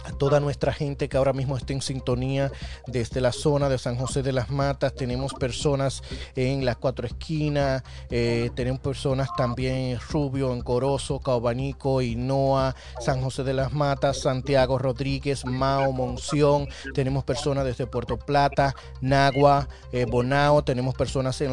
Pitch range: 125-145 Hz